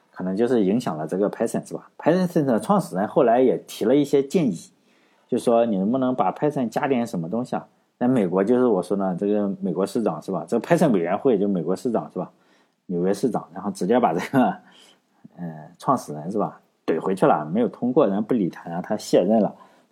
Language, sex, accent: Chinese, male, native